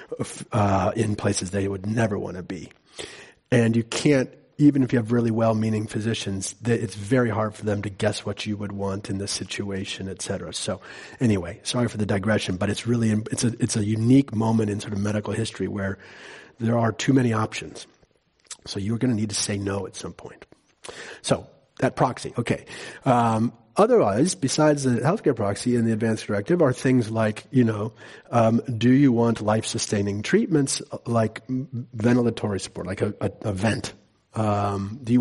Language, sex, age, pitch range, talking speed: English, male, 40-59, 105-120 Hz, 185 wpm